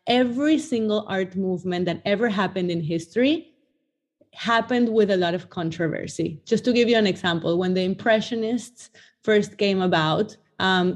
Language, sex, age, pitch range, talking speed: English, female, 30-49, 175-210 Hz, 155 wpm